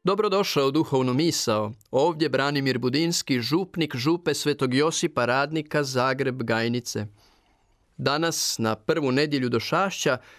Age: 40-59